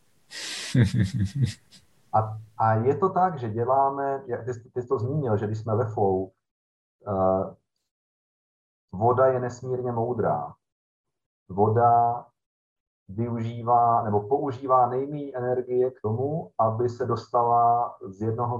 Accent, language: native, Czech